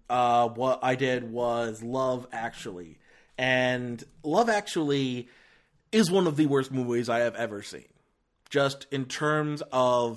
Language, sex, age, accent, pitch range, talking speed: English, male, 30-49, American, 120-160 Hz, 140 wpm